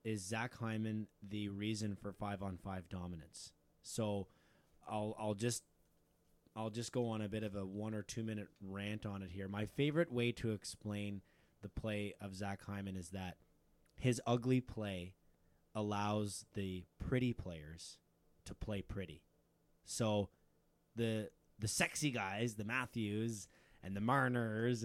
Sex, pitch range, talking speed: male, 100-125 Hz, 150 wpm